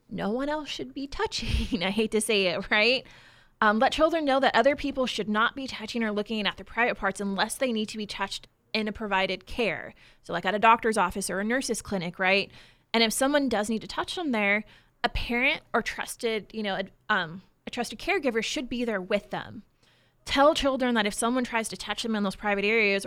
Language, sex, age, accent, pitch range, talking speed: English, female, 20-39, American, 205-245 Hz, 230 wpm